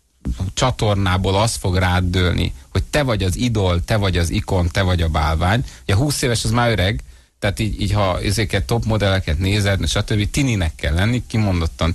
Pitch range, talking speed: 95-145 Hz, 190 wpm